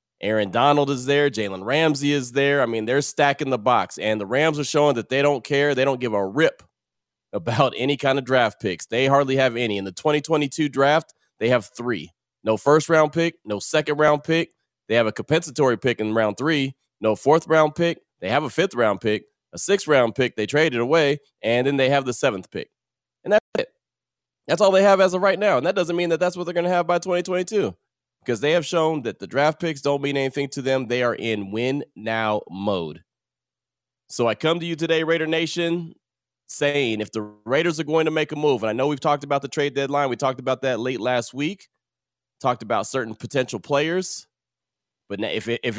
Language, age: English, 30-49